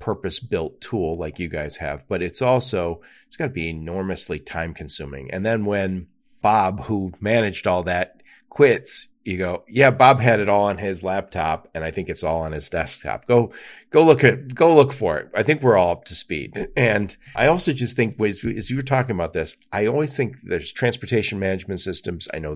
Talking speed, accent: 205 wpm, American